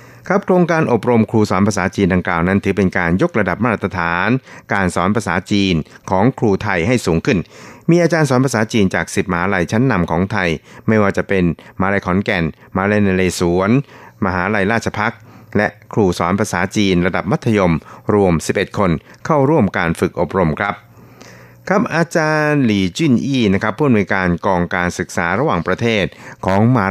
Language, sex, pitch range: Thai, male, 90-115 Hz